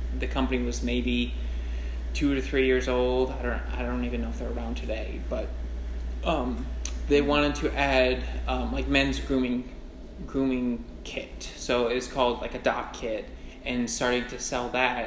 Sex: male